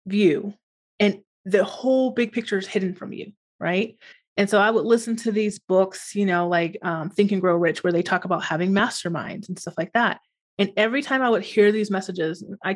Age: 30-49